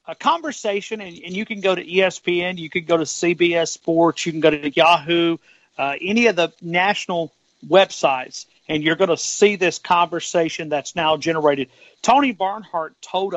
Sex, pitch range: male, 165-210 Hz